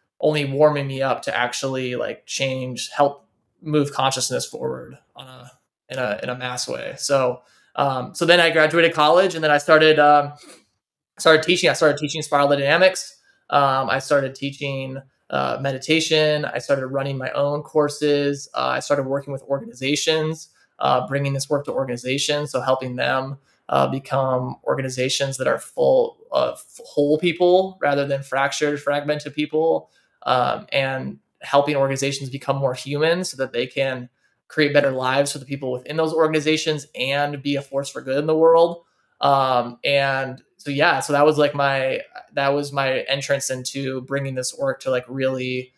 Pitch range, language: 130-150 Hz, English